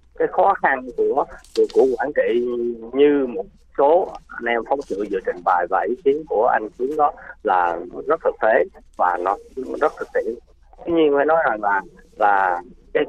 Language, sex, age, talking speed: Vietnamese, male, 30-49, 195 wpm